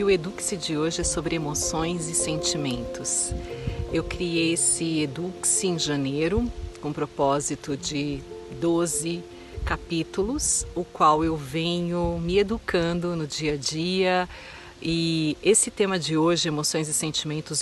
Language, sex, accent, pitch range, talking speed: Portuguese, female, Brazilian, 150-180 Hz, 135 wpm